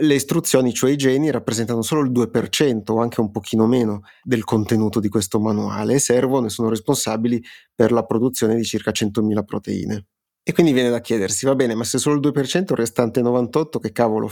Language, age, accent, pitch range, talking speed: Italian, 30-49, native, 110-125 Hz, 200 wpm